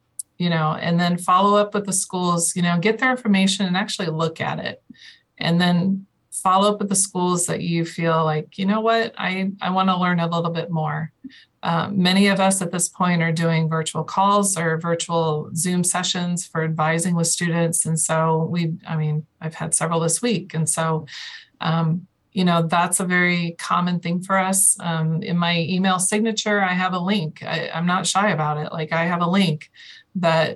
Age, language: 30-49, English